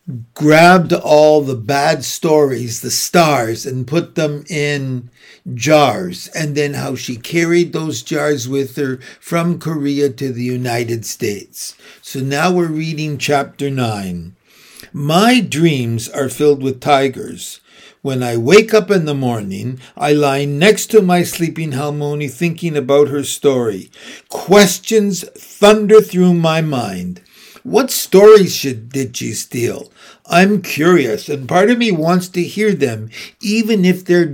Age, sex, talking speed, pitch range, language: 60-79, male, 140 wpm, 140-180 Hz, English